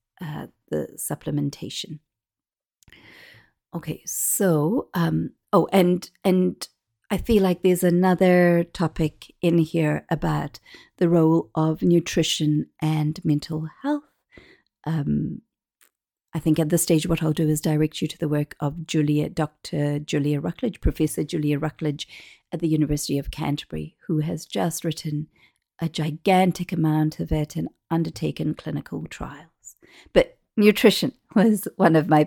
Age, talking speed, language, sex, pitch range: 50-69, 135 wpm, English, female, 155-190 Hz